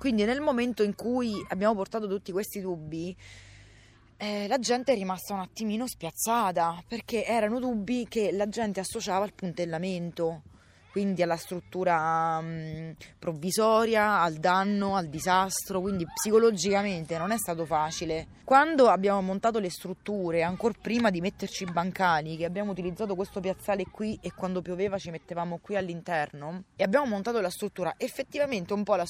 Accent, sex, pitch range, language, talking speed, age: native, female, 170-215 Hz, Italian, 155 wpm, 20-39